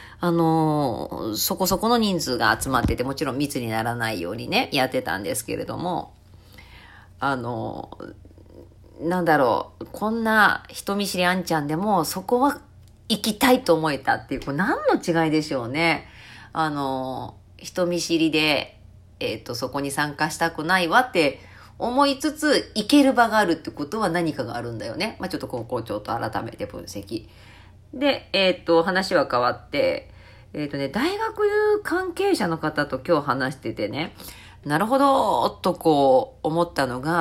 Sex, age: female, 40-59